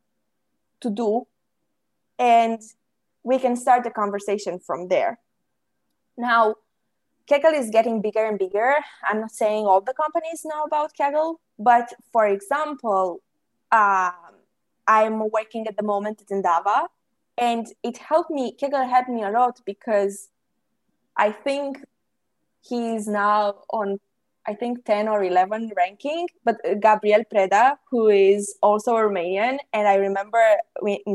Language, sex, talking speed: English, female, 135 wpm